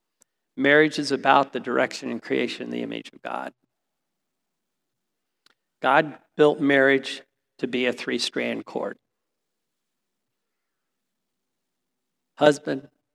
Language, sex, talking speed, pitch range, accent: English, male, 95 wpm, 130-155 Hz, American